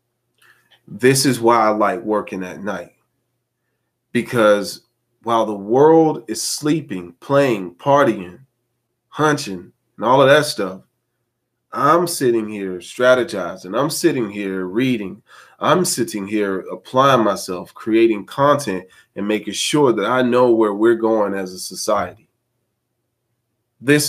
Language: English